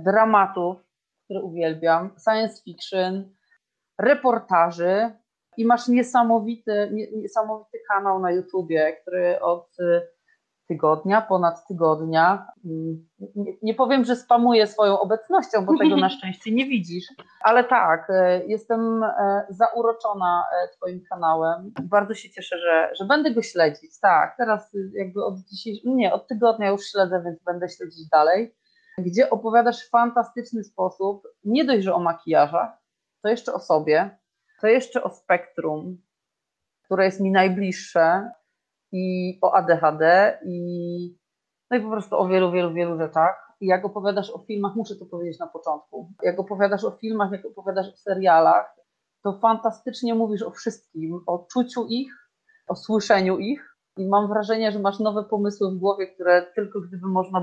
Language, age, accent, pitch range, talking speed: Polish, 30-49, native, 180-225 Hz, 140 wpm